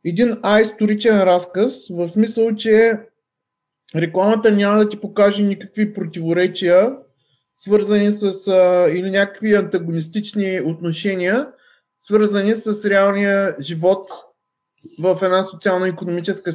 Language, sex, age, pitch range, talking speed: Bulgarian, male, 20-39, 165-210 Hz, 100 wpm